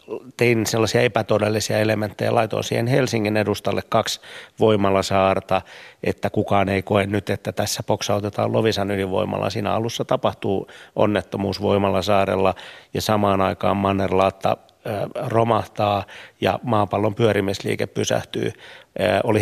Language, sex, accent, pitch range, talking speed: Finnish, male, native, 100-110 Hz, 110 wpm